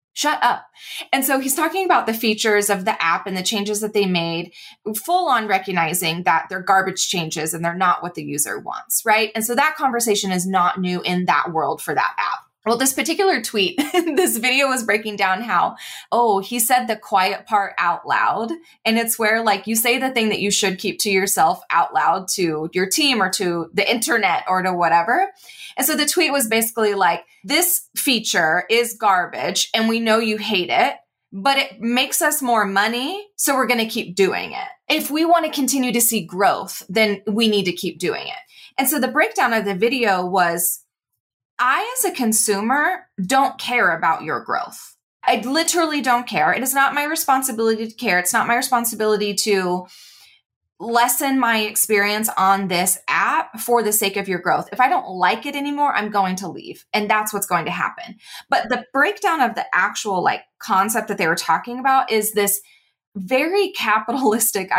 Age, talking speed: 20-39, 195 wpm